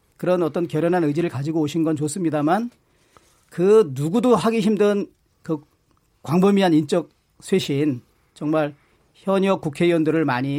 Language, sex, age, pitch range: Korean, male, 40-59, 150-195 Hz